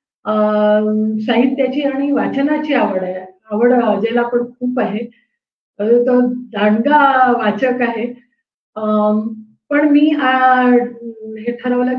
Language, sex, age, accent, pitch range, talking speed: Marathi, female, 30-49, native, 235-295 Hz, 85 wpm